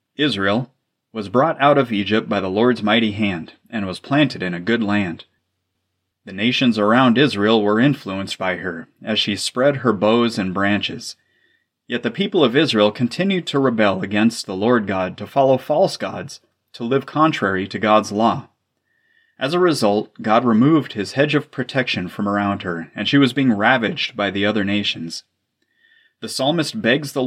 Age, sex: 30-49, male